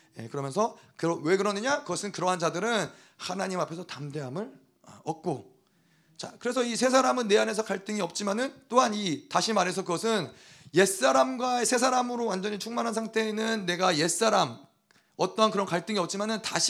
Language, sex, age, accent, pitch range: Korean, male, 30-49, native, 180-240 Hz